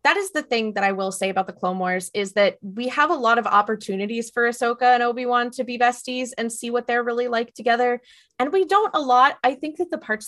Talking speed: 255 wpm